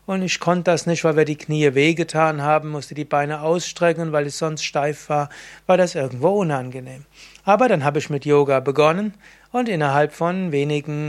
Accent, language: German, German